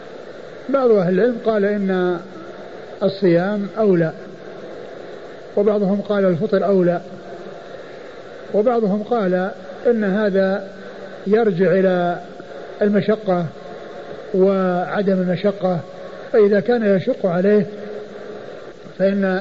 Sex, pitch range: male, 185-235 Hz